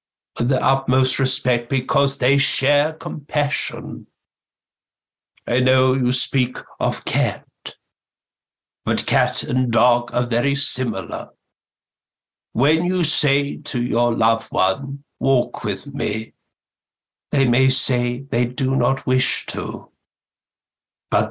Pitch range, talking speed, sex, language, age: 115-135 Hz, 110 wpm, male, English, 60-79